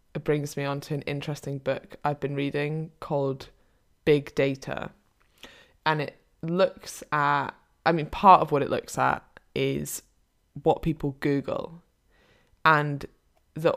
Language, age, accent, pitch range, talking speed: English, 20-39, British, 150-210 Hz, 135 wpm